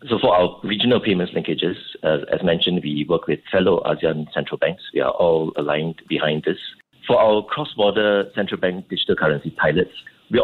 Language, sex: English, male